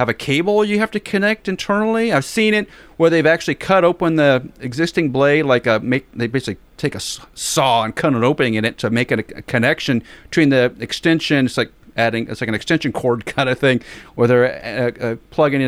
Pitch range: 115-145 Hz